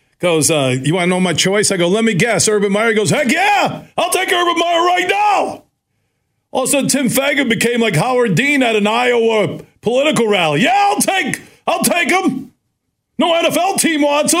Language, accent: English, American